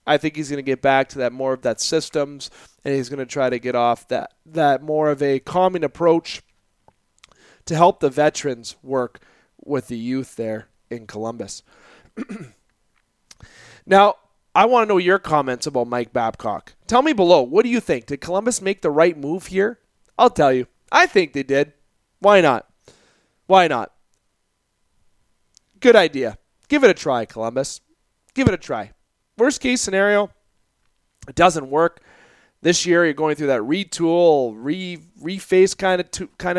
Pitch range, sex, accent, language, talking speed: 130-180 Hz, male, American, English, 165 wpm